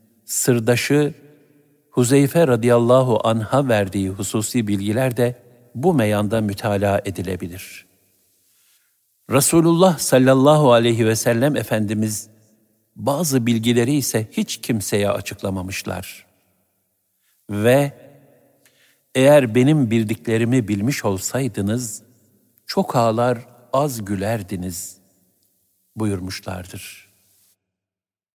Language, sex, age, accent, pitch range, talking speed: Turkish, male, 60-79, native, 100-135 Hz, 75 wpm